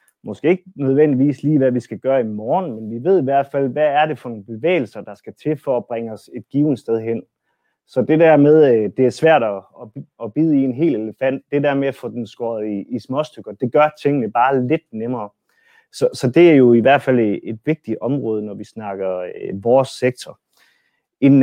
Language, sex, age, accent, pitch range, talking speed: Danish, male, 30-49, native, 115-150 Hz, 220 wpm